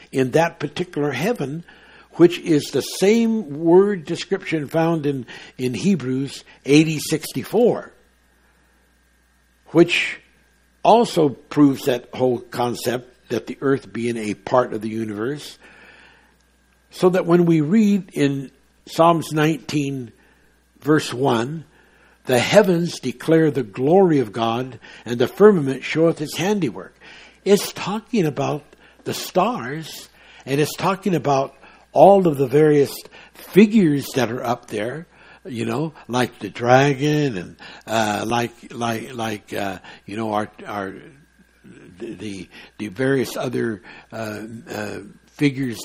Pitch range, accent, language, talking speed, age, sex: 120-160 Hz, American, English, 120 wpm, 60-79, male